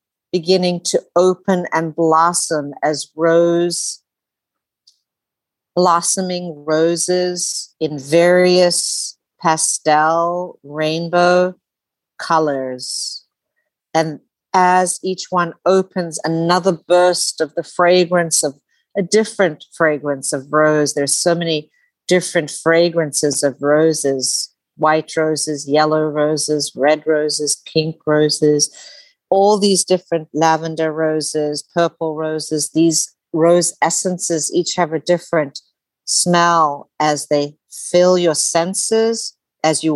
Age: 50-69